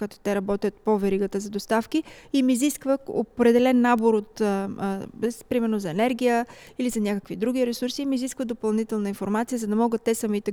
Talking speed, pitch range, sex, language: 190 wpm, 205-250 Hz, female, Bulgarian